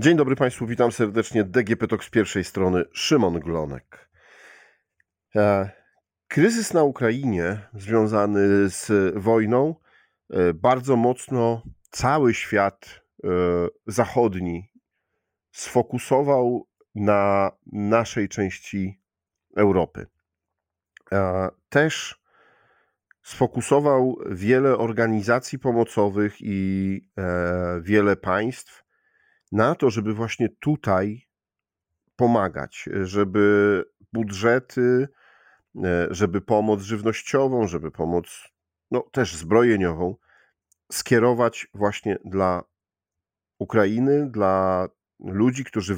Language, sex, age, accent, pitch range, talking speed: Polish, male, 40-59, native, 95-120 Hz, 75 wpm